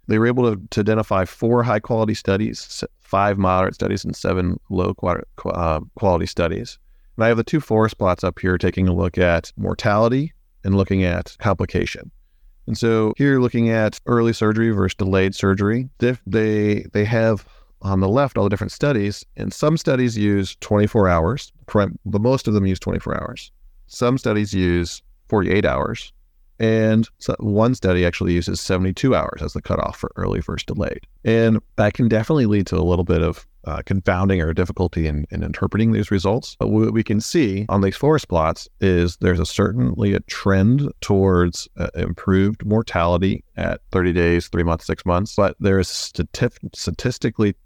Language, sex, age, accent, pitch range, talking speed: English, male, 30-49, American, 90-110 Hz, 175 wpm